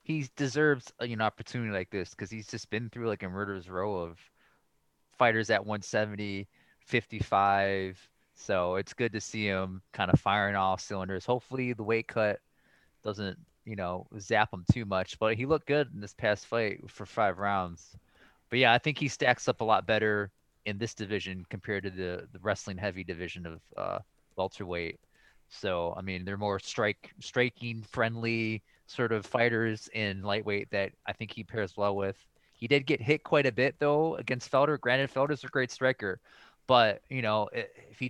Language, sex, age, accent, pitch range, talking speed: English, male, 20-39, American, 100-125 Hz, 185 wpm